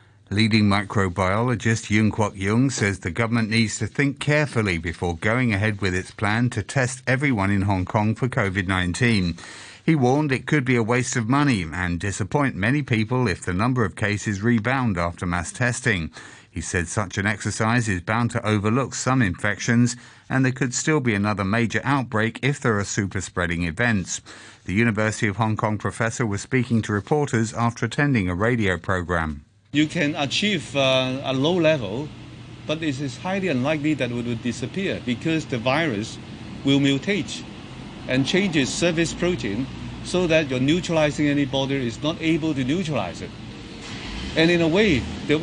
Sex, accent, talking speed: male, British, 170 wpm